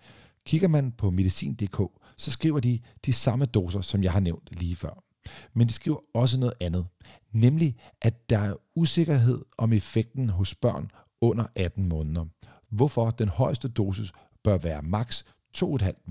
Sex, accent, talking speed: male, native, 155 wpm